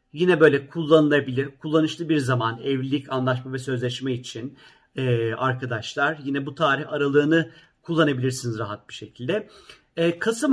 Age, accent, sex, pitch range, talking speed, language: 50-69, native, male, 135-170 Hz, 130 wpm, Turkish